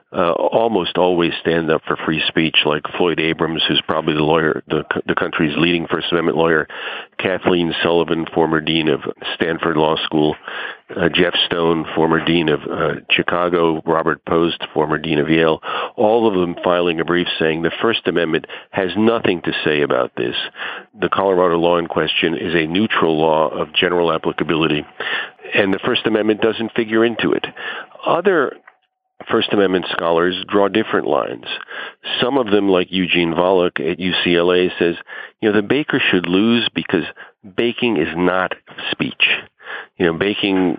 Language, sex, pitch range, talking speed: English, male, 80-100 Hz, 160 wpm